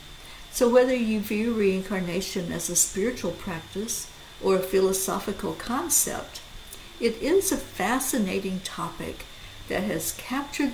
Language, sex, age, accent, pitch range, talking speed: English, female, 60-79, American, 180-245 Hz, 115 wpm